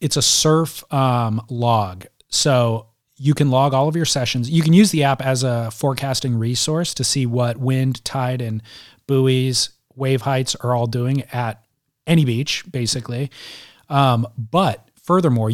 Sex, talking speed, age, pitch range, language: male, 160 wpm, 30-49, 120-140 Hz, English